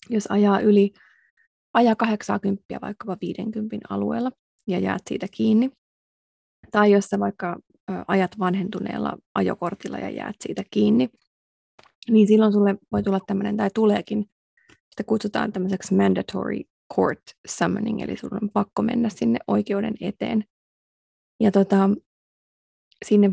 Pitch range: 190-215 Hz